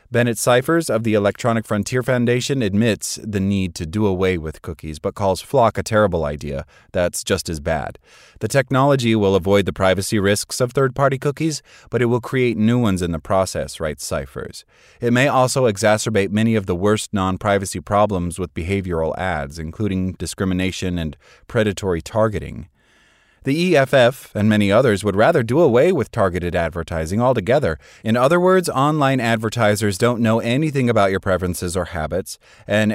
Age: 30-49